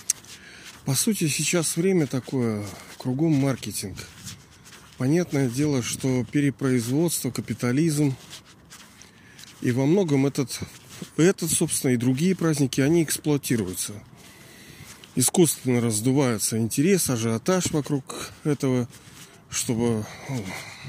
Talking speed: 85 wpm